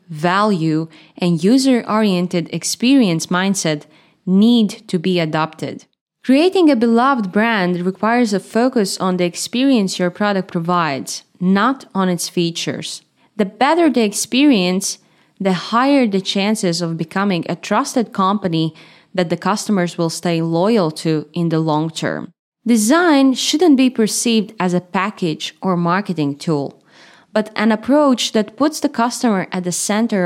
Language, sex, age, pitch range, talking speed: English, female, 20-39, 175-230 Hz, 140 wpm